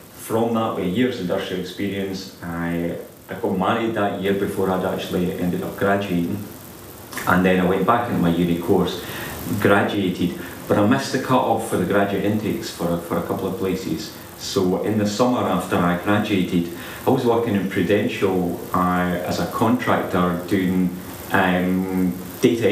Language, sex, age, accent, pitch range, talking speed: English, male, 30-49, British, 90-100 Hz, 170 wpm